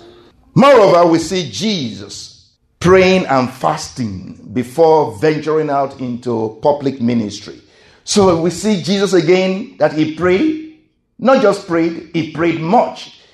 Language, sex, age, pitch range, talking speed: English, male, 50-69, 120-190 Hz, 120 wpm